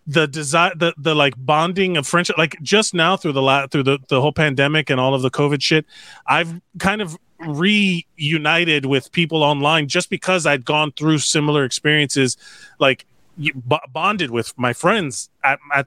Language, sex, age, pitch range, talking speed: English, male, 30-49, 140-180 Hz, 180 wpm